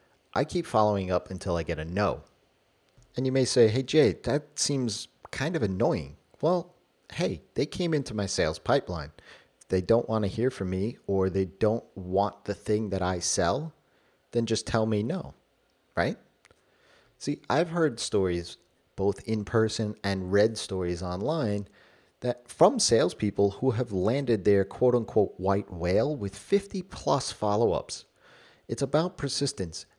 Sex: male